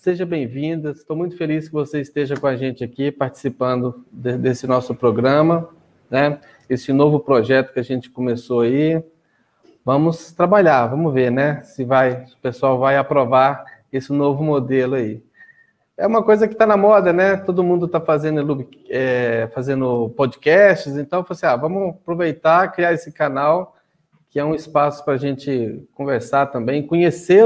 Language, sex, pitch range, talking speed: Portuguese, male, 140-180 Hz, 165 wpm